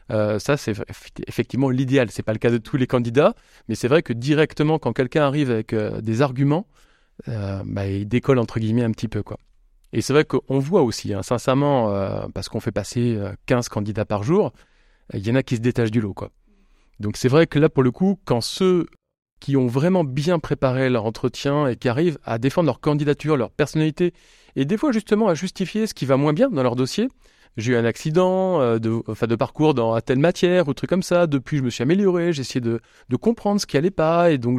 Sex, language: male, French